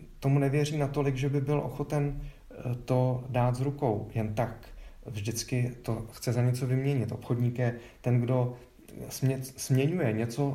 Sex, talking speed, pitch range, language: male, 140 wpm, 105-125 Hz, Czech